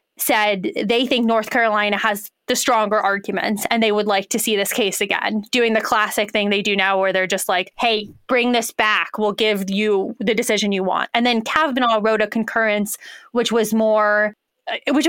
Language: English